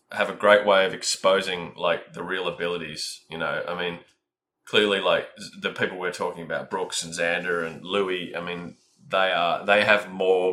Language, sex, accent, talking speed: English, male, Australian, 190 wpm